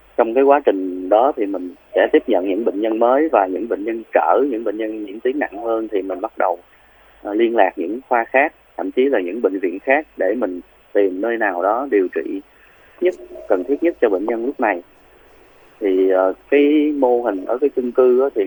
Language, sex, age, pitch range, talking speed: Vietnamese, male, 20-39, 105-145 Hz, 220 wpm